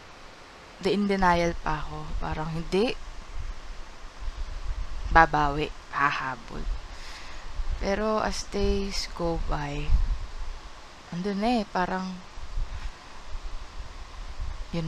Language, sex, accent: Filipino, female, native